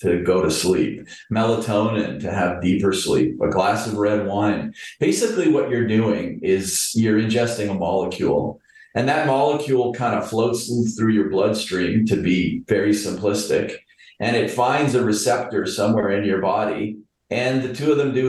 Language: English